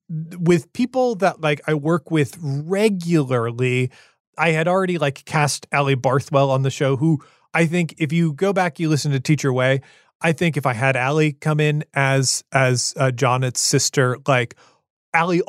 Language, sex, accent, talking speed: English, male, American, 175 wpm